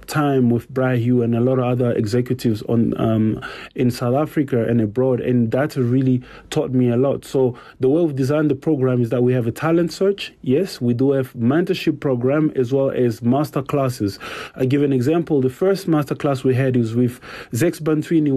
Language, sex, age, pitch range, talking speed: English, male, 30-49, 125-145 Hz, 205 wpm